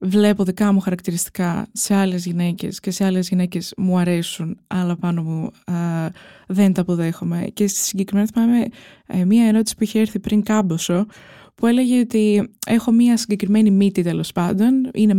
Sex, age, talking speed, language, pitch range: female, 20-39, 160 wpm, Greek, 180-220 Hz